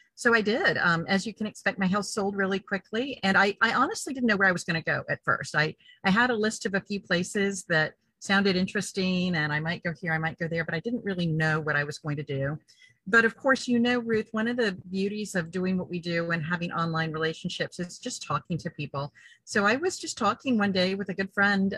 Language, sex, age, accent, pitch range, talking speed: English, female, 40-59, American, 175-220 Hz, 255 wpm